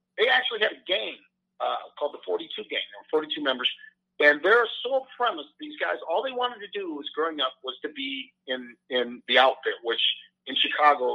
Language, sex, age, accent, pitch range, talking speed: English, male, 50-69, American, 150-230 Hz, 210 wpm